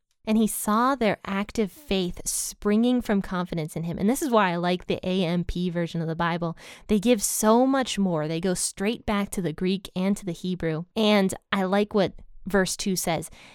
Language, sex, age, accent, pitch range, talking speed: English, female, 20-39, American, 185-230 Hz, 205 wpm